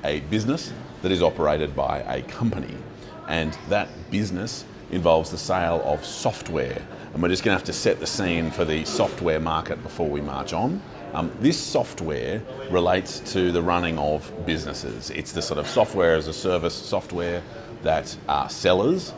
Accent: Australian